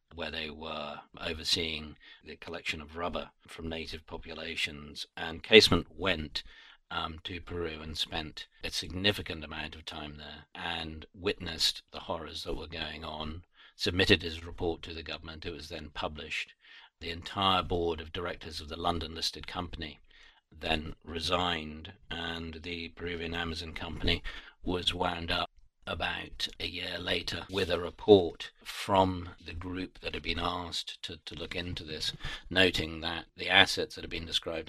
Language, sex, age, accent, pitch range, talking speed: English, male, 50-69, British, 80-90 Hz, 155 wpm